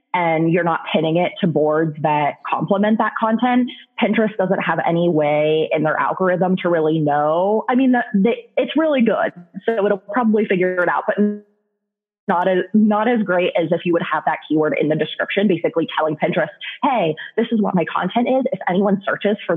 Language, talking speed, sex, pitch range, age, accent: English, 195 wpm, female, 160-210 Hz, 20-39, American